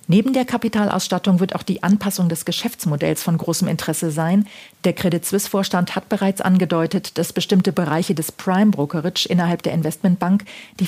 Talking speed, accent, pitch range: 160 wpm, German, 160-195 Hz